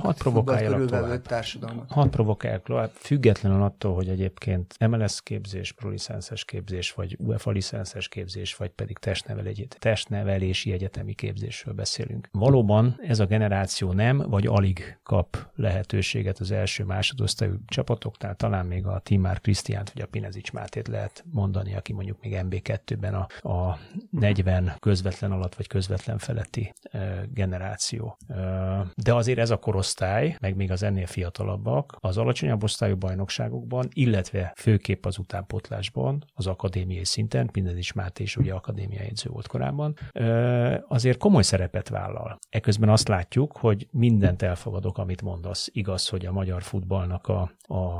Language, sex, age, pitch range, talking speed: Hungarian, male, 30-49, 95-115 Hz, 135 wpm